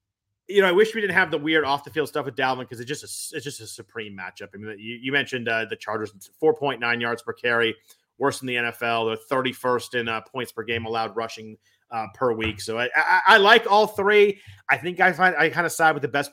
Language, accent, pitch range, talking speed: English, American, 115-150 Hz, 270 wpm